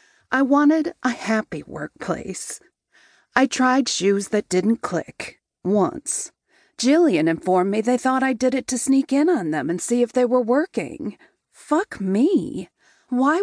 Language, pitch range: English, 195-275 Hz